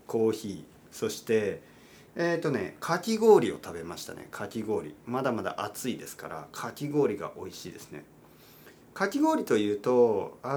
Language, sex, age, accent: Japanese, male, 40-59, native